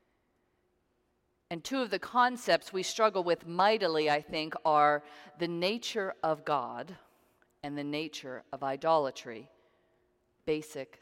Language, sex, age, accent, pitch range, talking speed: English, female, 40-59, American, 150-200 Hz, 120 wpm